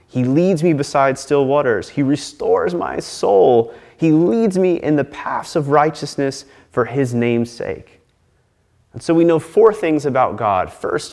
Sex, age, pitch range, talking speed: male, 30-49, 105-145 Hz, 165 wpm